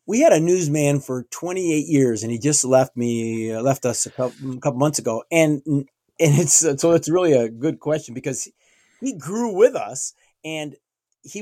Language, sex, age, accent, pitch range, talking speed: English, male, 30-49, American, 130-185 Hz, 200 wpm